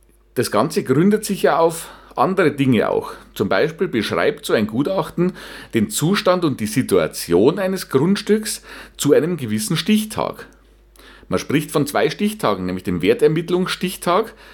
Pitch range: 130-180 Hz